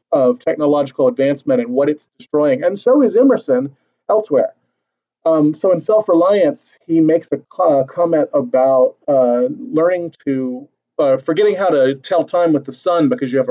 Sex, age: male, 30-49